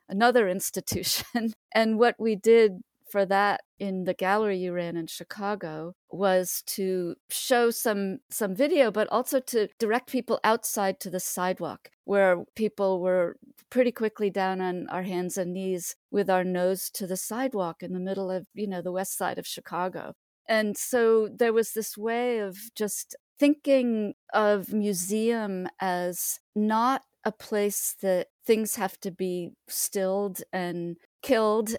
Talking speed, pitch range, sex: 155 wpm, 185-225 Hz, female